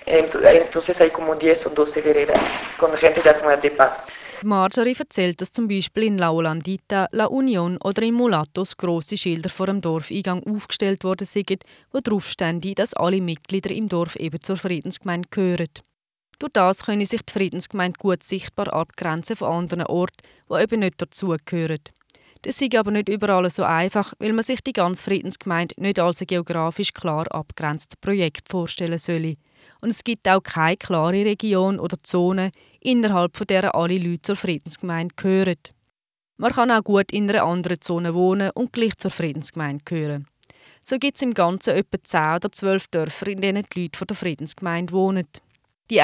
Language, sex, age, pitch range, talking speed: German, female, 20-39, 170-205 Hz, 155 wpm